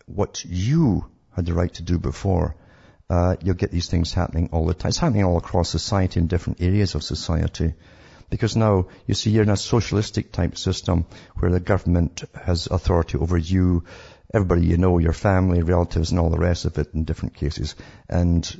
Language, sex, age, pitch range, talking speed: English, male, 50-69, 85-95 Hz, 195 wpm